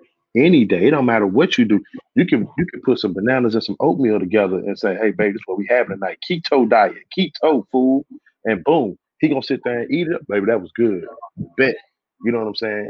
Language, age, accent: English, 30-49, American